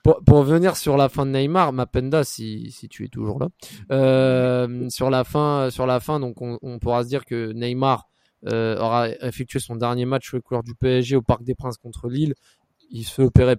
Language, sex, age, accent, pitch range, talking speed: French, male, 20-39, French, 120-155 Hz, 220 wpm